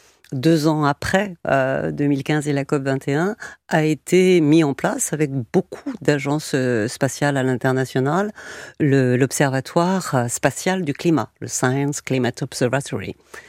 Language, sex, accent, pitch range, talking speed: French, female, French, 130-160 Hz, 125 wpm